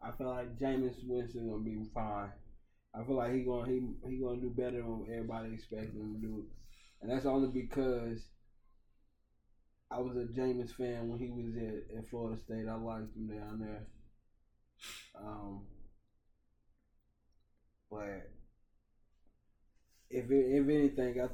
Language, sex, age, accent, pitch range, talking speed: English, male, 20-39, American, 110-125 Hz, 145 wpm